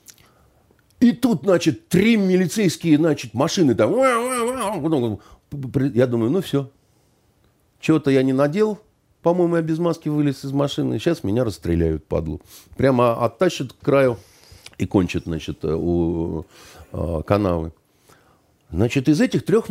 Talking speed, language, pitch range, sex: 120 wpm, Russian, 105-170 Hz, male